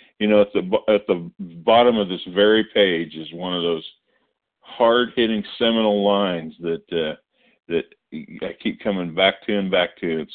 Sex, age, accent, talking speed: male, 50-69, American, 175 wpm